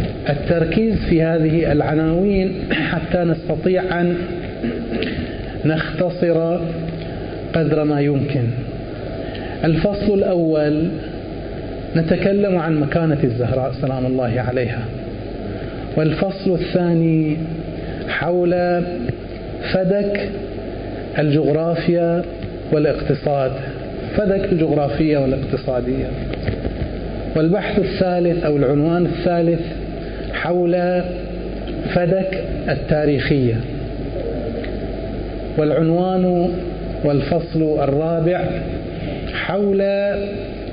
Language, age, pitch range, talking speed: Arabic, 30-49, 135-175 Hz, 60 wpm